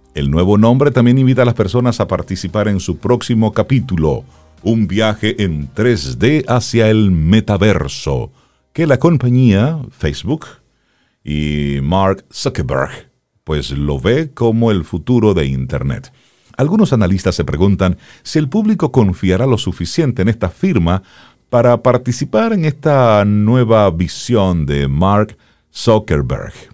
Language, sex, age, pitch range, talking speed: Spanish, male, 50-69, 80-120 Hz, 130 wpm